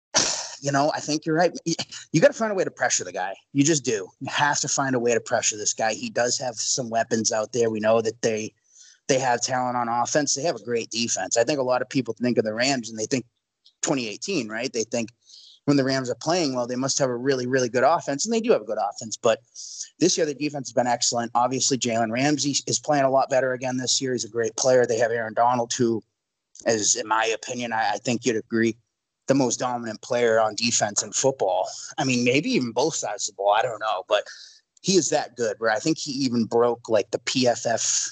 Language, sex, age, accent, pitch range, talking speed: English, male, 30-49, American, 120-145 Hz, 250 wpm